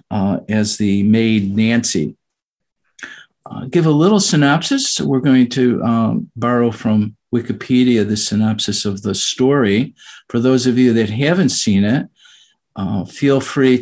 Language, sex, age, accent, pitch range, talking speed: English, male, 50-69, American, 110-135 Hz, 145 wpm